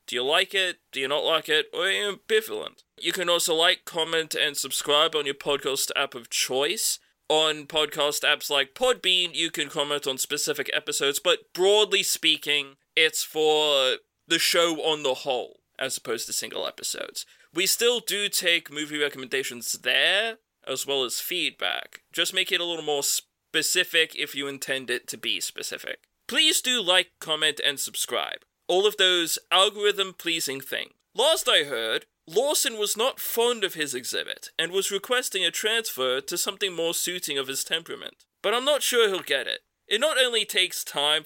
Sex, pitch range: male, 150-230 Hz